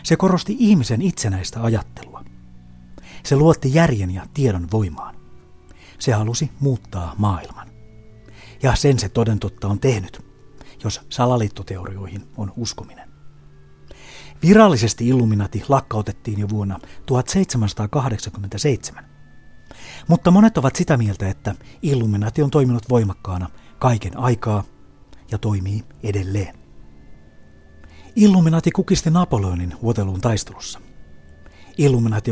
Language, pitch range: Finnish, 95-130 Hz